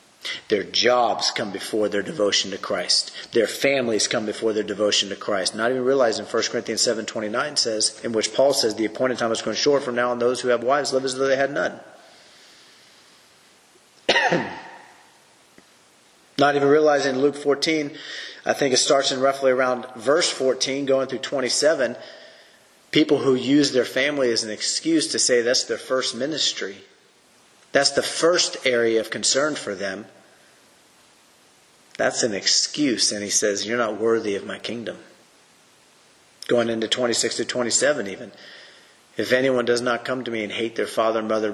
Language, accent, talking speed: English, American, 170 wpm